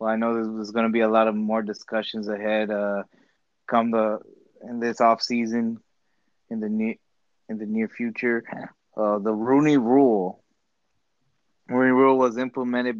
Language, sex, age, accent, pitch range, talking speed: English, male, 20-39, American, 110-125 Hz, 160 wpm